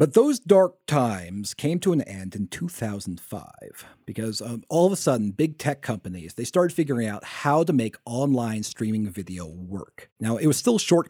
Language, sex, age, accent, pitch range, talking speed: English, male, 30-49, American, 100-130 Hz, 190 wpm